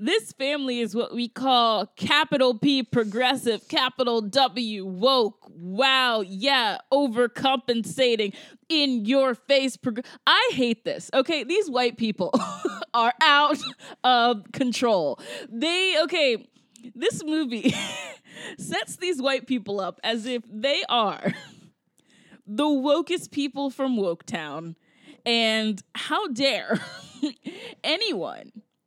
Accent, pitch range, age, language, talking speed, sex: American, 220-290 Hz, 20-39, English, 105 wpm, female